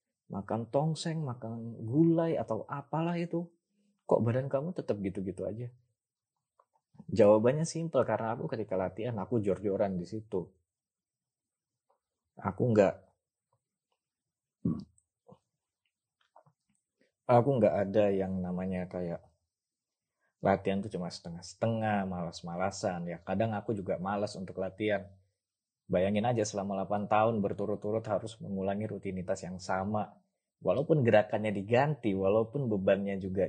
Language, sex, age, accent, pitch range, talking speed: Indonesian, male, 20-39, native, 95-115 Hz, 110 wpm